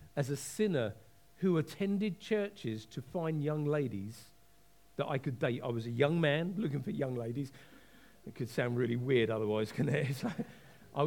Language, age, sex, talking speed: English, 50-69, male, 175 wpm